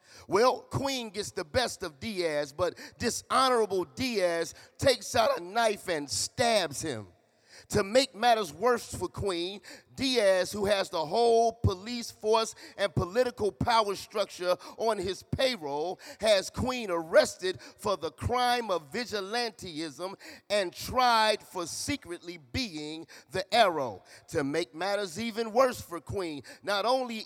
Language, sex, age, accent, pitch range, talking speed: English, male, 40-59, American, 175-235 Hz, 135 wpm